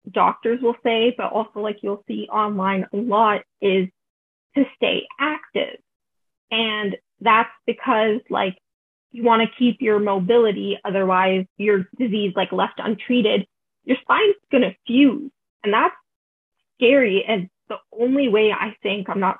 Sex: female